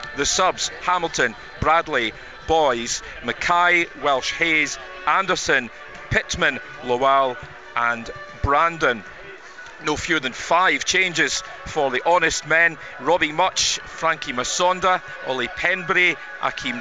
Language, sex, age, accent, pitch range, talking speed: English, male, 40-59, British, 130-175 Hz, 105 wpm